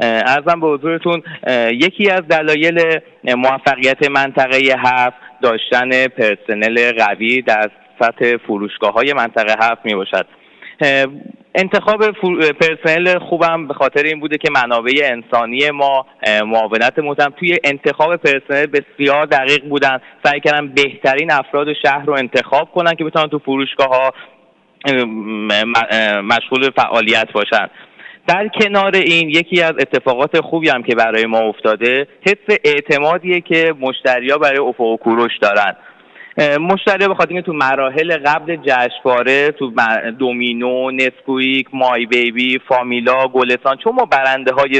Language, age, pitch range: Persian, 30-49, 130-165 Hz